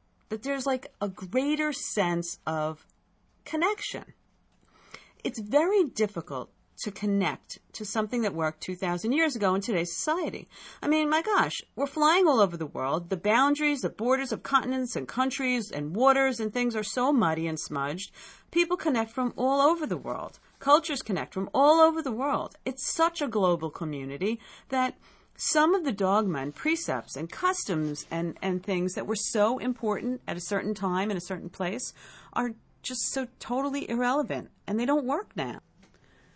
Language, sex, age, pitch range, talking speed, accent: English, female, 50-69, 170-265 Hz, 170 wpm, American